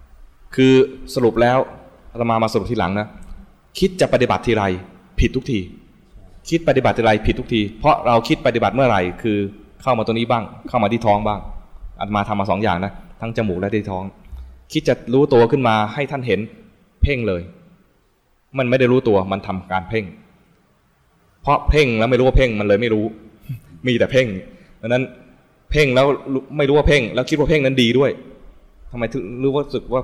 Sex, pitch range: male, 100-130 Hz